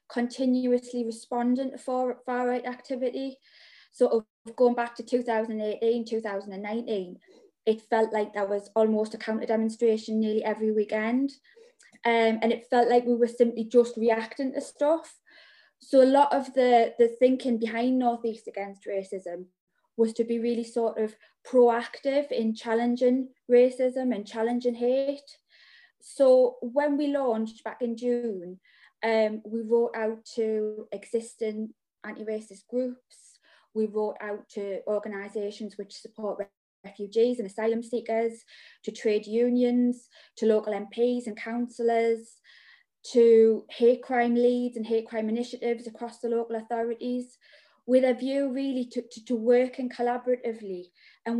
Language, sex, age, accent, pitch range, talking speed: English, female, 20-39, British, 220-250 Hz, 135 wpm